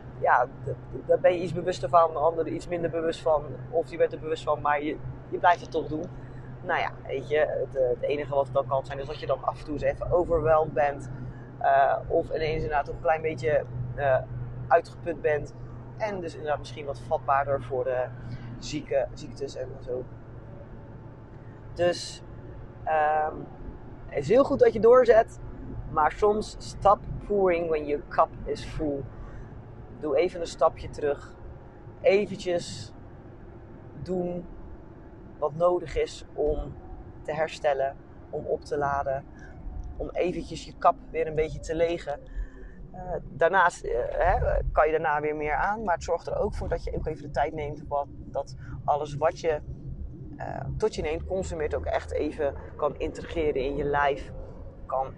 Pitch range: 125-165 Hz